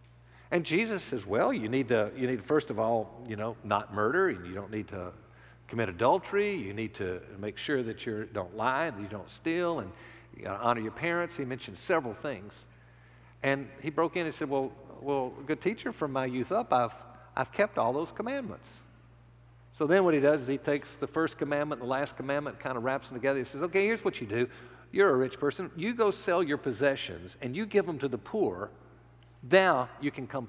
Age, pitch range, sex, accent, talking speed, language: 50-69, 115-170 Hz, male, American, 225 wpm, English